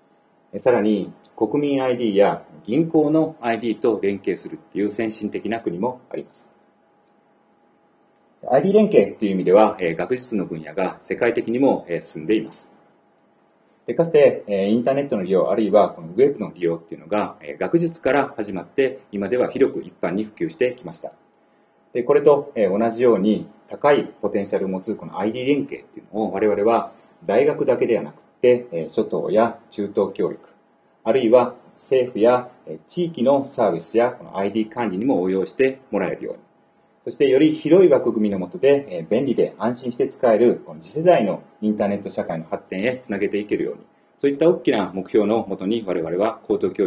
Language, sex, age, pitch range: Japanese, male, 40-59, 100-135 Hz